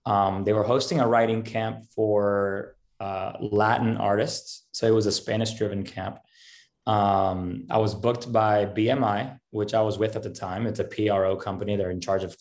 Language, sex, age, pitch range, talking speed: English, male, 20-39, 100-120 Hz, 190 wpm